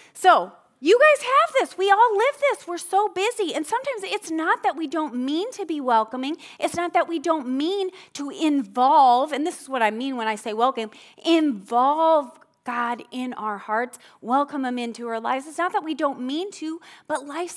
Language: English